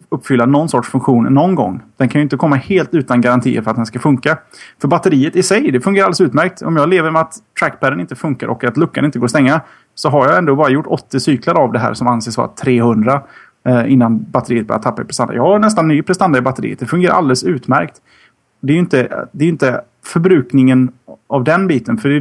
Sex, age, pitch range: male, 30-49, 125-160 Hz